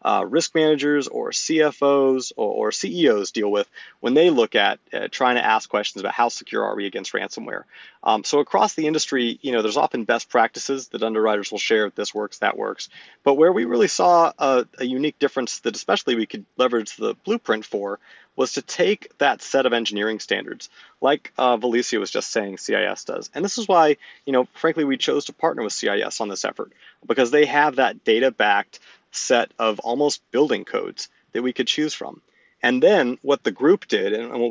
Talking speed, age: 205 wpm, 30-49